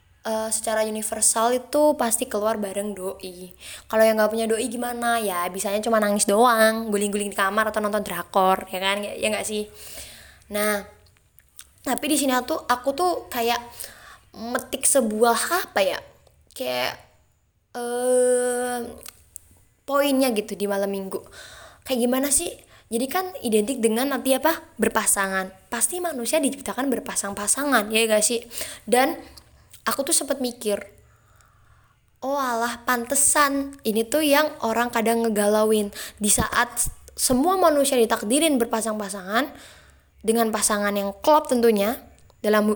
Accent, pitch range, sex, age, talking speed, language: native, 210-265 Hz, female, 20-39, 130 wpm, Indonesian